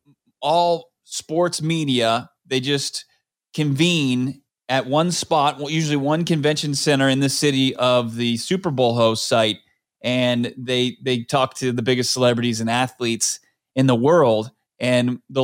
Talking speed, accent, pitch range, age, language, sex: 145 wpm, American, 125-145 Hz, 30-49, English, male